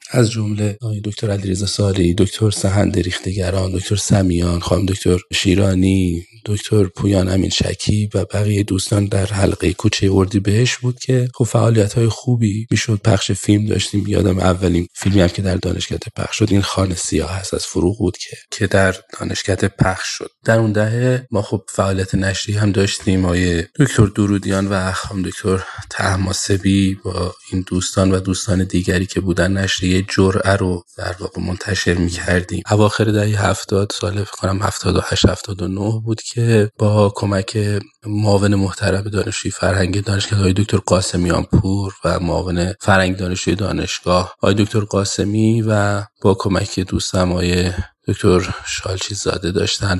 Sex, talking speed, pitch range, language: male, 150 wpm, 95-105 Hz, Persian